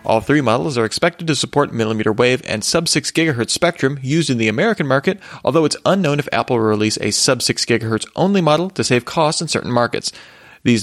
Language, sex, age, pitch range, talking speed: English, male, 30-49, 110-150 Hz, 185 wpm